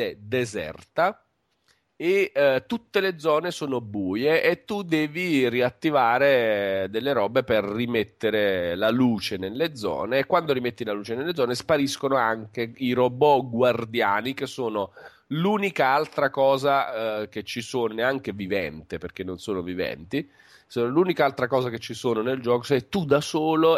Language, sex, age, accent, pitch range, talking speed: Italian, male, 40-59, native, 110-140 Hz, 150 wpm